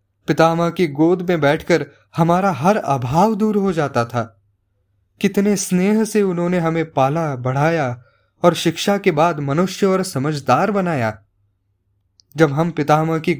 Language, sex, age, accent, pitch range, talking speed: English, male, 20-39, Indian, 110-160 Hz, 140 wpm